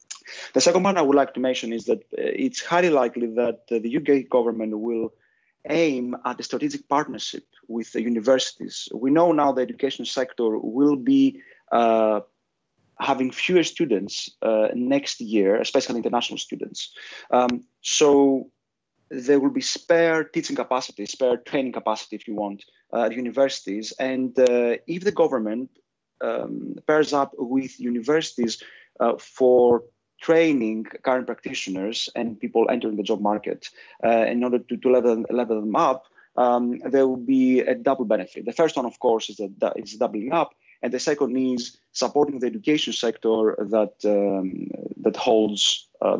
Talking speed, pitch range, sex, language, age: 155 wpm, 115-145 Hz, male, English, 30-49